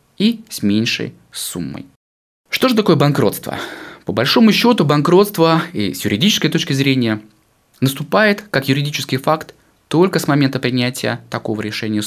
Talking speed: 135 wpm